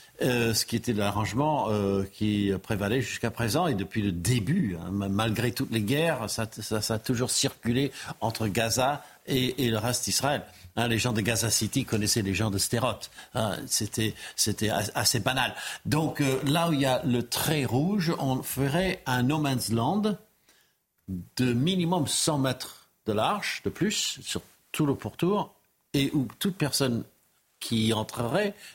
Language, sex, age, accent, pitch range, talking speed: French, male, 60-79, French, 100-130 Hz, 170 wpm